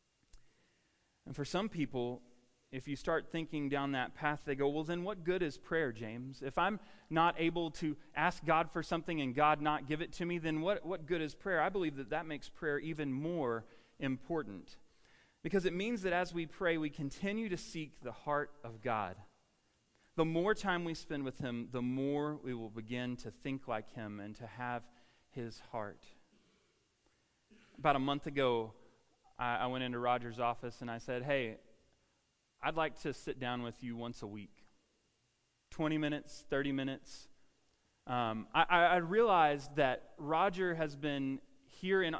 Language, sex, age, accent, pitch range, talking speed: English, male, 40-59, American, 125-165 Hz, 175 wpm